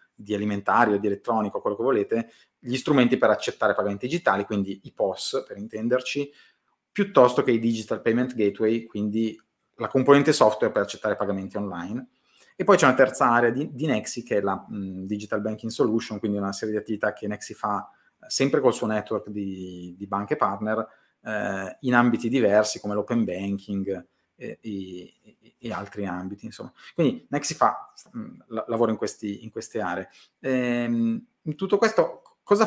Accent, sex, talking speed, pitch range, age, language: native, male, 170 wpm, 105-125 Hz, 30-49, Italian